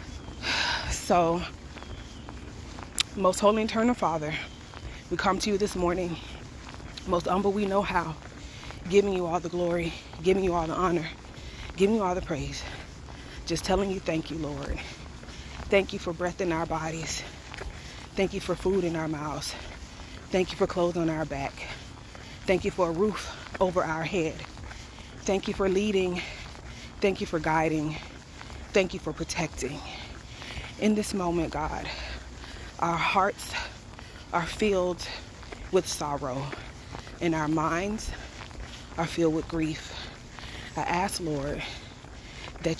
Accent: American